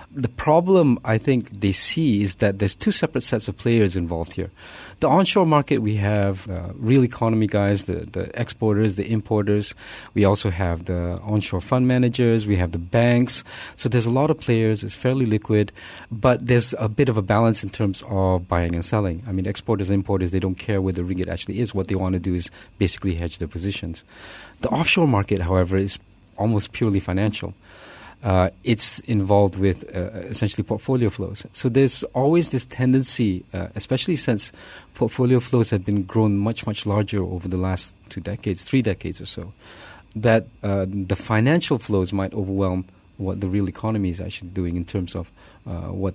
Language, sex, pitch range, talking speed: English, male, 95-115 Hz, 190 wpm